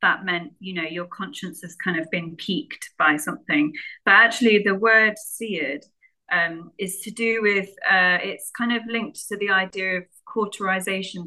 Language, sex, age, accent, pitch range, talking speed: English, female, 30-49, British, 180-225 Hz, 175 wpm